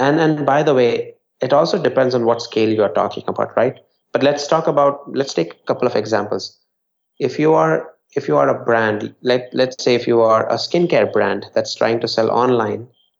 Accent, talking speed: Indian, 220 wpm